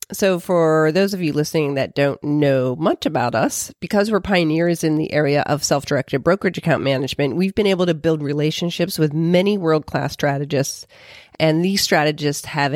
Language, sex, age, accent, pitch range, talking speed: English, female, 40-59, American, 145-180 Hz, 175 wpm